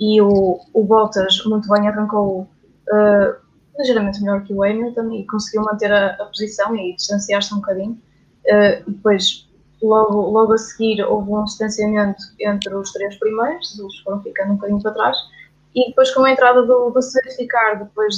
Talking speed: 170 wpm